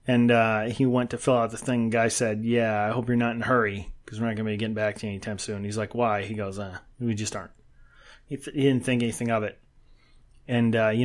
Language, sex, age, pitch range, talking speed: English, male, 30-49, 115-140 Hz, 275 wpm